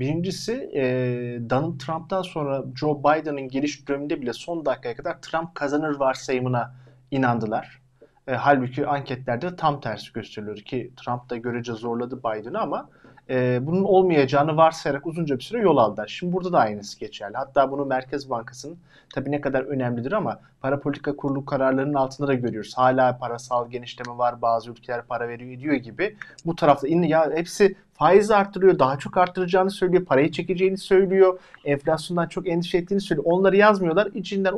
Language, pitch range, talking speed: Turkish, 125-165 Hz, 160 wpm